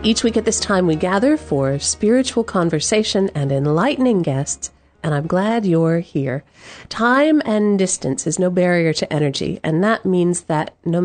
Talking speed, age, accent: 170 wpm, 40-59, American